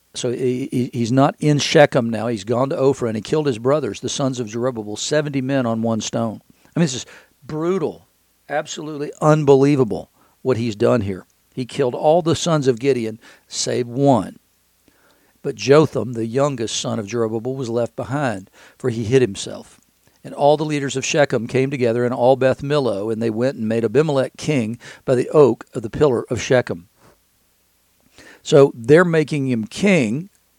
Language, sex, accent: English, male, American